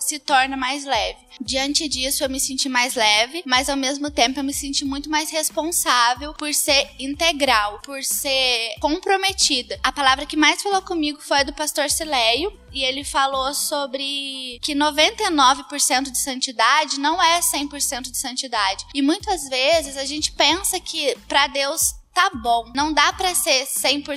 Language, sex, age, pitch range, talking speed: Portuguese, female, 10-29, 270-320 Hz, 165 wpm